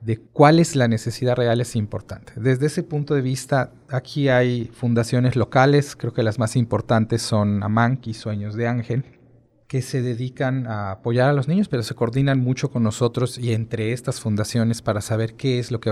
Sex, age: male, 40-59